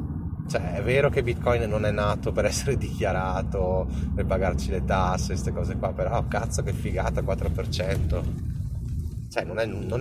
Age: 30-49